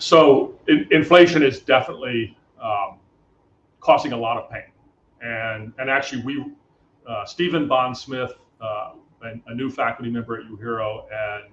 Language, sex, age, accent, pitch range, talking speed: English, male, 40-59, American, 115-145 Hz, 140 wpm